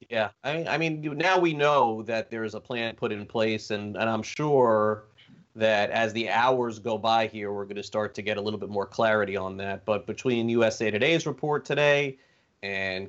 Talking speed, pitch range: 205 wpm, 105-135 Hz